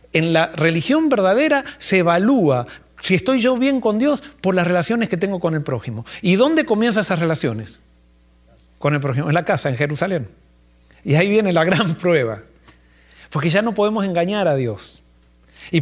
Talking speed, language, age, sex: 180 wpm, Spanish, 50-69, male